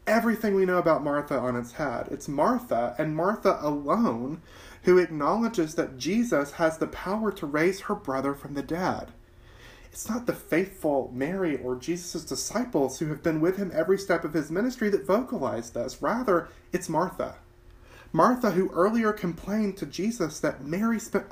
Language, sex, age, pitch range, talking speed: English, male, 30-49, 125-195 Hz, 170 wpm